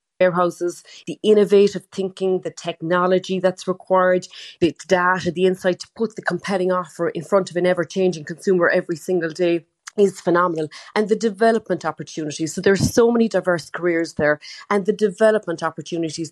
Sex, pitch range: female, 165-185 Hz